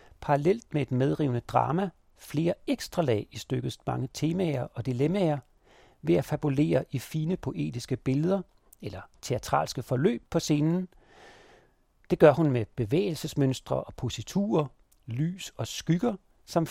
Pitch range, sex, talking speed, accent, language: 125-165 Hz, male, 135 wpm, native, Danish